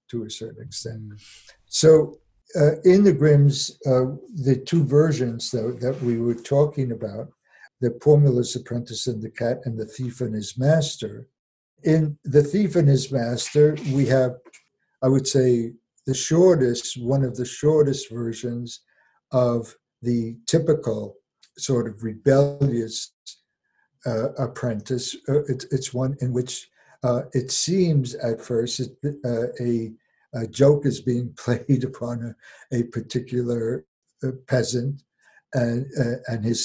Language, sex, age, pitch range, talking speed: English, male, 60-79, 120-140 Hz, 135 wpm